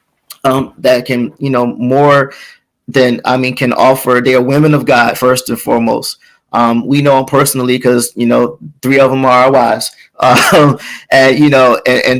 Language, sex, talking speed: English, male, 190 wpm